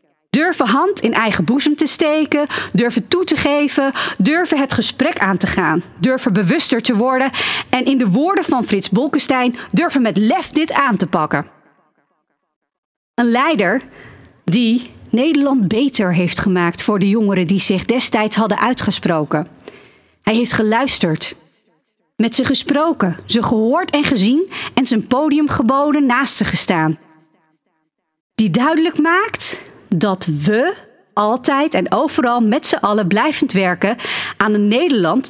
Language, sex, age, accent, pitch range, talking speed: Dutch, female, 40-59, Dutch, 190-275 Hz, 140 wpm